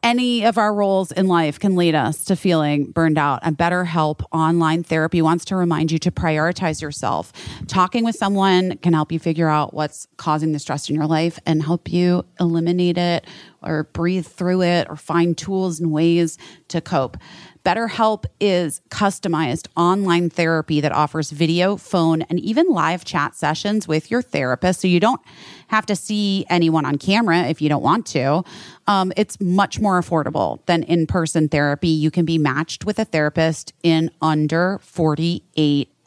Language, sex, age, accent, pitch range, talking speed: English, female, 30-49, American, 150-180 Hz, 175 wpm